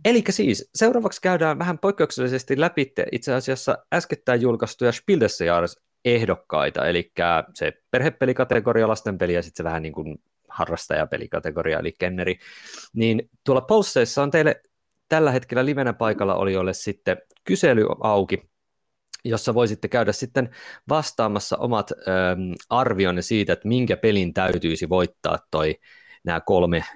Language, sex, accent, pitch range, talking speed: Finnish, male, native, 90-130 Hz, 120 wpm